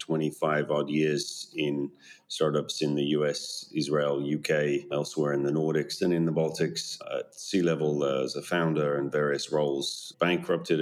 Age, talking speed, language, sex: 30-49, 155 wpm, English, male